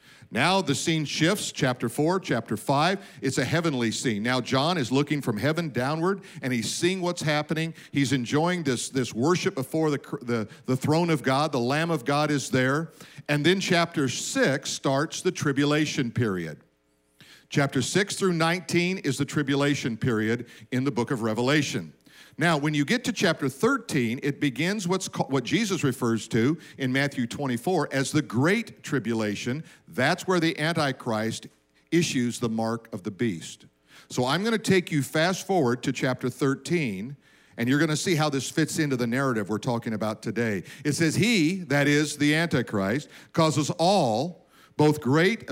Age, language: 50-69, English